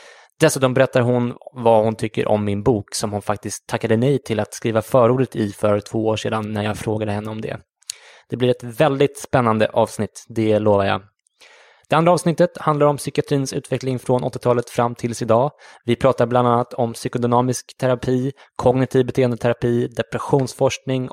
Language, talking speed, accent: English, 170 wpm, Swedish